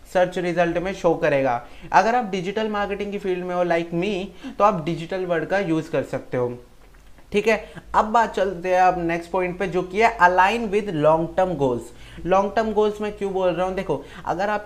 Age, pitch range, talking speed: 30-49, 165-190 Hz, 140 wpm